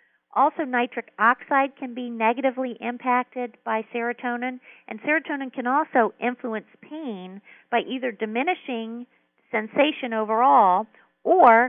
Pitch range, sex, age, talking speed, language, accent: 195-250 Hz, female, 50-69, 110 wpm, English, American